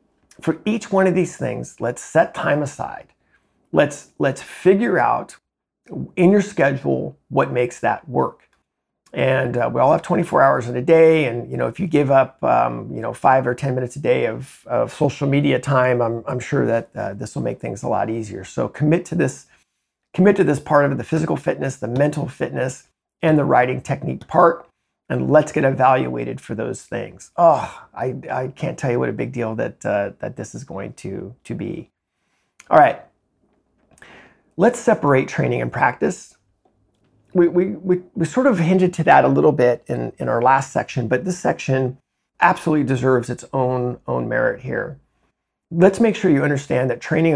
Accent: American